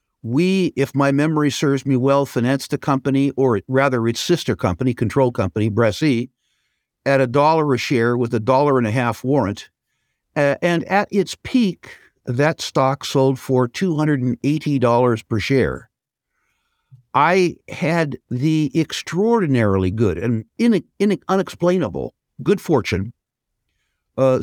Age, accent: 60-79, American